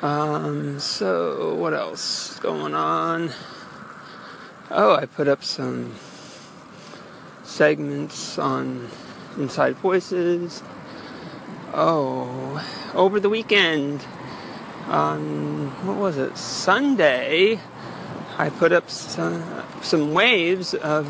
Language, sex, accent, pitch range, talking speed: English, male, American, 130-175 Hz, 90 wpm